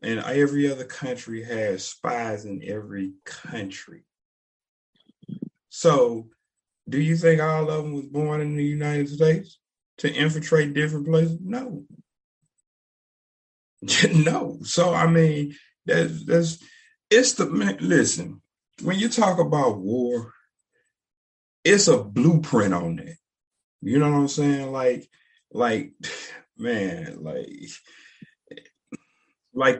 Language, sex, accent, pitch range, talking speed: English, male, American, 100-155 Hz, 115 wpm